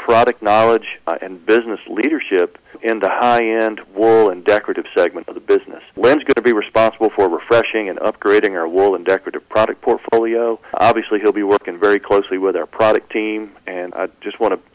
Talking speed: 185 wpm